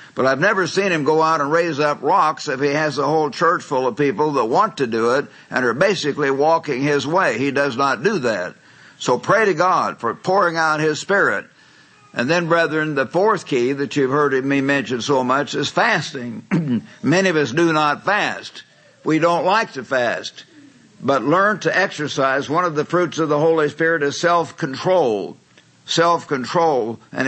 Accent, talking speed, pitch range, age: American, 190 wpm, 135-160 Hz, 60-79